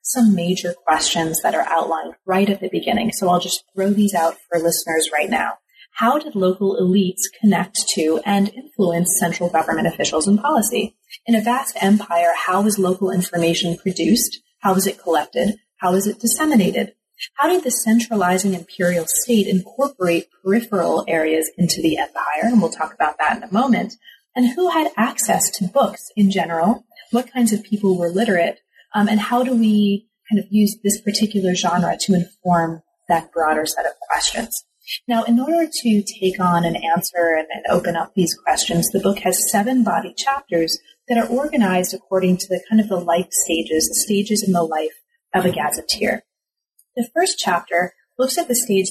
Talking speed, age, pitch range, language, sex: 180 wpm, 30-49, 175-225 Hz, English, female